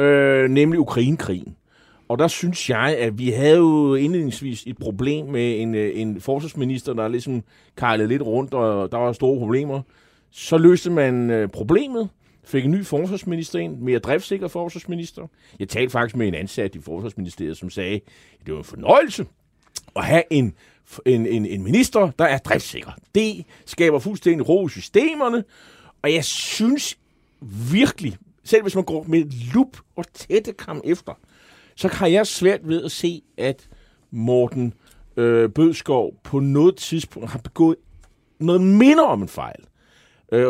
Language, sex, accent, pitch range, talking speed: Danish, male, native, 115-170 Hz, 160 wpm